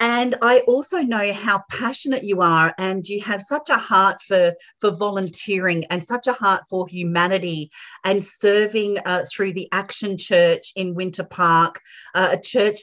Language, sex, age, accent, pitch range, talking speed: English, female, 40-59, Australian, 180-225 Hz, 170 wpm